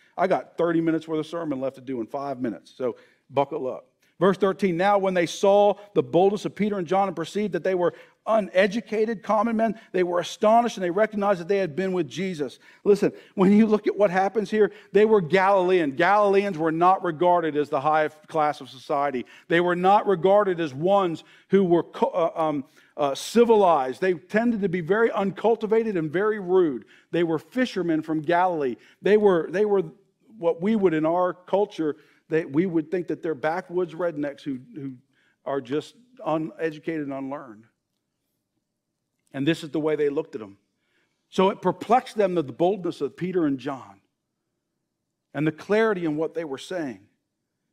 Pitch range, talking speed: 155-200 Hz, 185 wpm